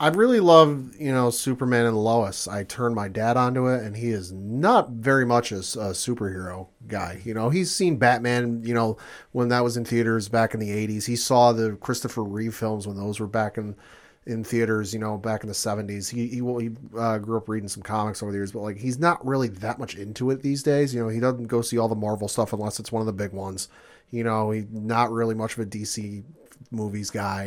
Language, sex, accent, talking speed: English, male, American, 240 wpm